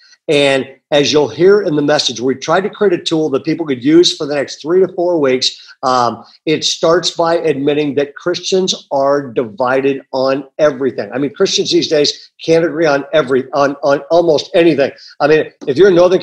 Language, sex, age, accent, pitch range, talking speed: English, male, 50-69, American, 140-185 Hz, 200 wpm